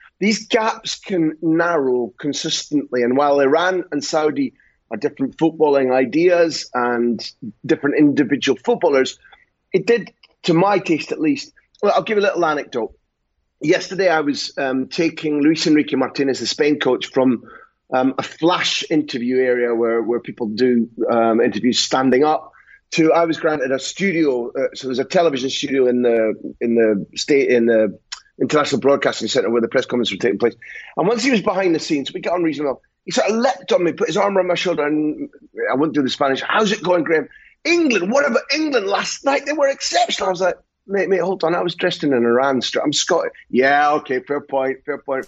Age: 30-49